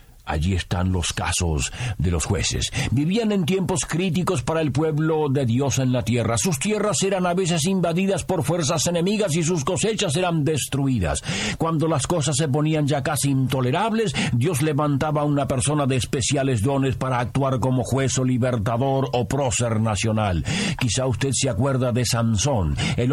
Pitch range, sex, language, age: 110-155 Hz, male, Spanish, 50-69